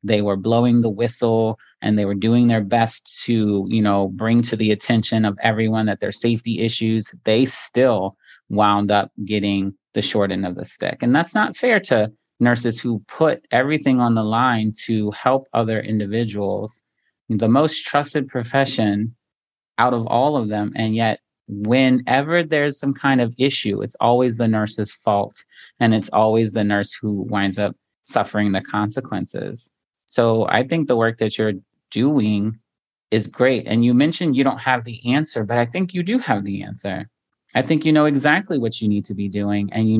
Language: English